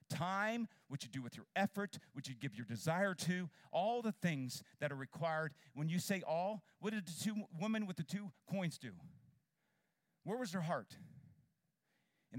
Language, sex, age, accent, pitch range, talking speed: English, male, 50-69, American, 130-180 Hz, 185 wpm